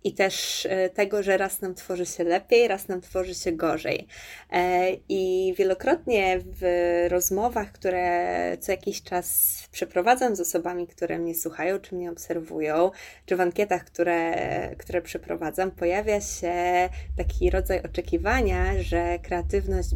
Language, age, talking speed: Polish, 20-39, 130 wpm